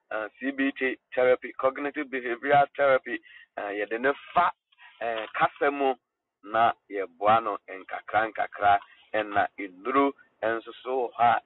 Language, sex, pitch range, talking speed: English, male, 130-185 Hz, 110 wpm